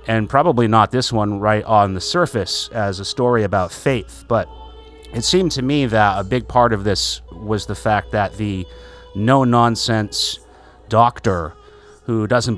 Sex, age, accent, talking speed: male, 30-49, American, 165 wpm